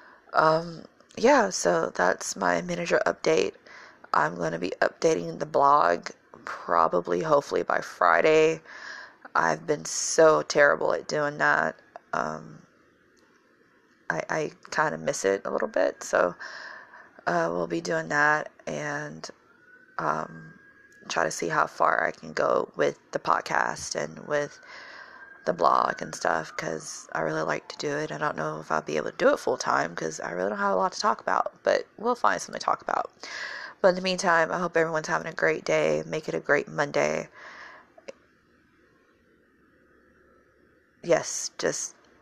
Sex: female